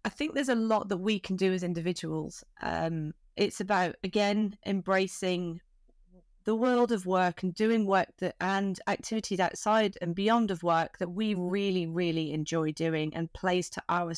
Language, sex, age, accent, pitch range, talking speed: English, female, 30-49, British, 175-215 Hz, 175 wpm